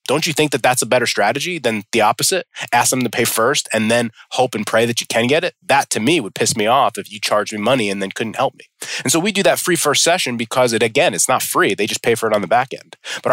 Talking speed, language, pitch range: 300 wpm, English, 110-135 Hz